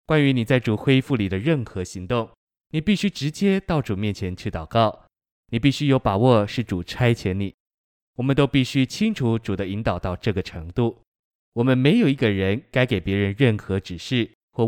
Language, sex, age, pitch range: Chinese, male, 20-39, 100-130 Hz